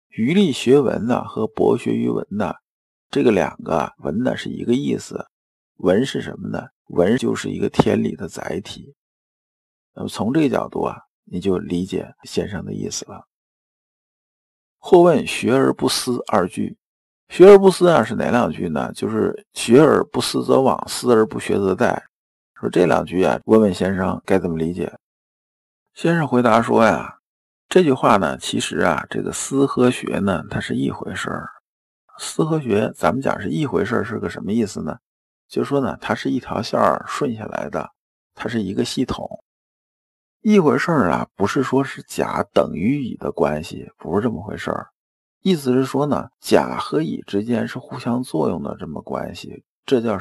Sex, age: male, 50-69